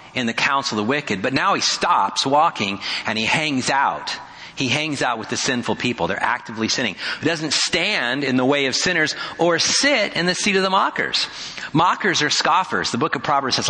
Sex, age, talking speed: male, 40-59, 215 wpm